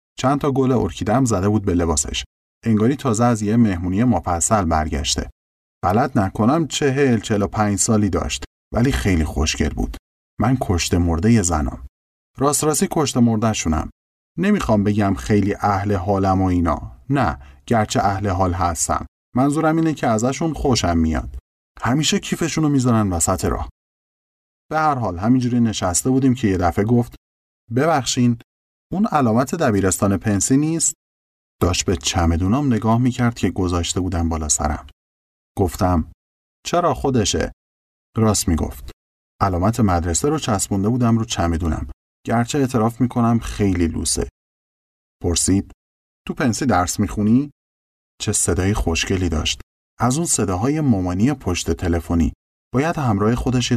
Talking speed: 130 wpm